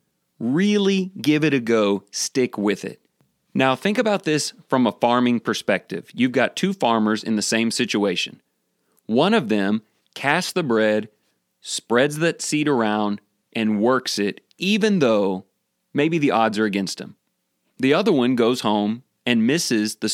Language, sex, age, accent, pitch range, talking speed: English, male, 30-49, American, 110-150 Hz, 160 wpm